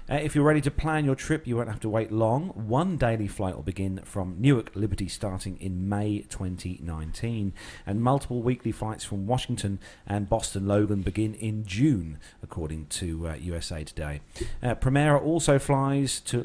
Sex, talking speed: male, 175 wpm